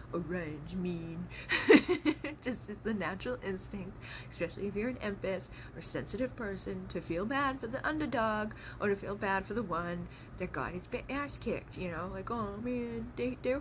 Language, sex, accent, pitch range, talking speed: English, female, American, 180-245 Hz, 170 wpm